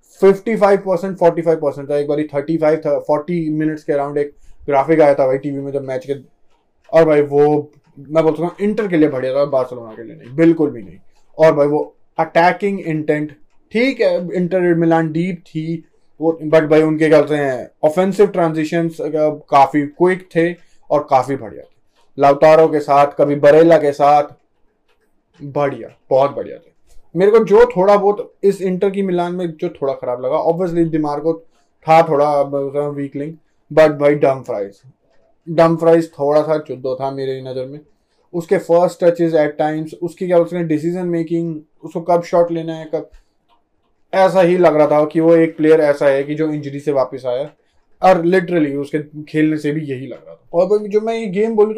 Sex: male